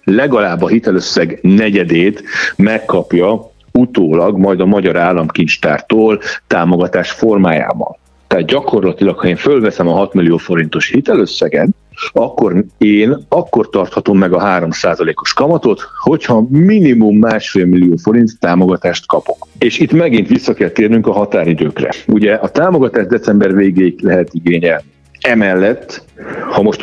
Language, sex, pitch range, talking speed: Hungarian, male, 85-110 Hz, 125 wpm